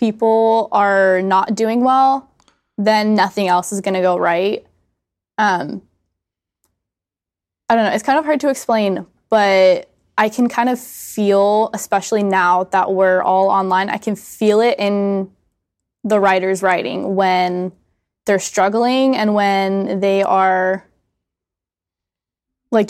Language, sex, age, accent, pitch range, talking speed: English, female, 10-29, American, 185-220 Hz, 135 wpm